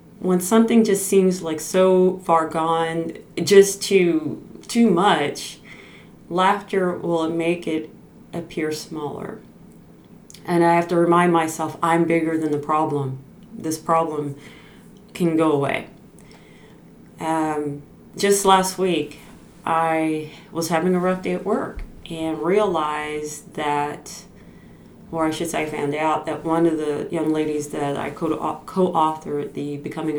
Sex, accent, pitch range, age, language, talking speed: female, American, 150-180 Hz, 30-49, English, 135 wpm